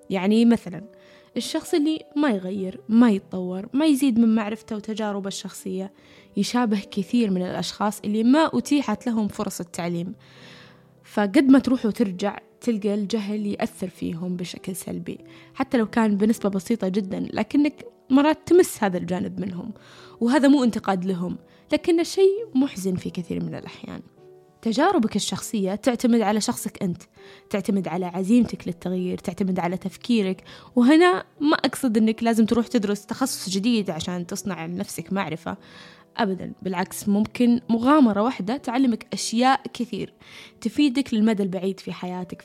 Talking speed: 135 wpm